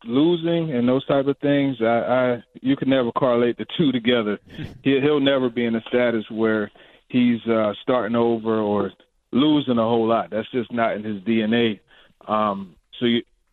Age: 30-49